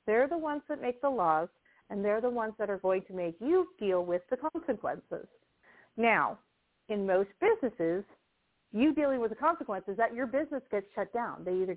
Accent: American